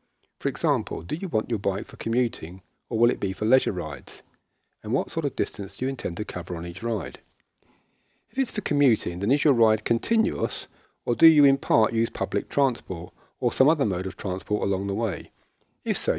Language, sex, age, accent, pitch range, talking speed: English, male, 40-59, British, 100-130 Hz, 210 wpm